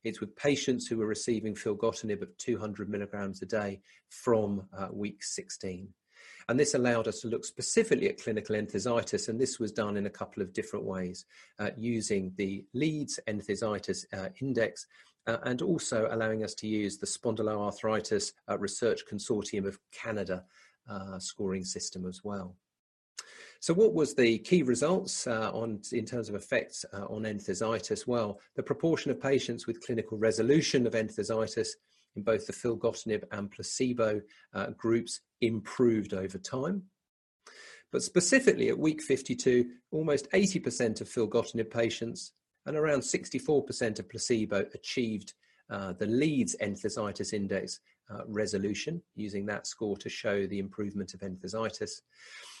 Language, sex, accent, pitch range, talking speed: English, male, British, 100-130 Hz, 145 wpm